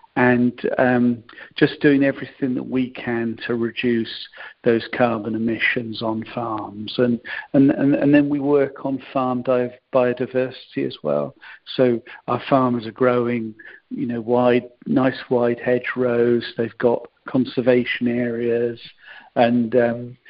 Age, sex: 50-69, male